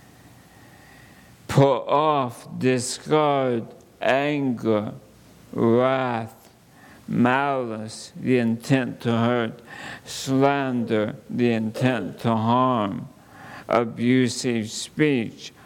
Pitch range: 115-130 Hz